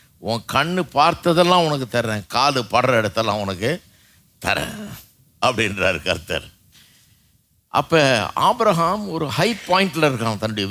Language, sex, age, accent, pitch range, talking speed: Tamil, male, 50-69, native, 115-180 Hz, 105 wpm